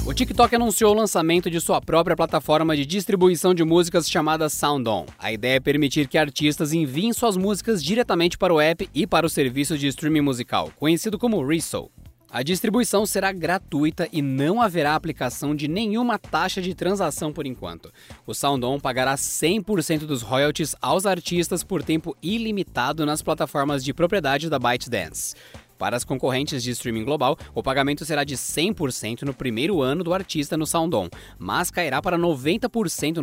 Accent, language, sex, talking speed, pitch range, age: Brazilian, Portuguese, male, 165 wpm, 135-185 Hz, 20-39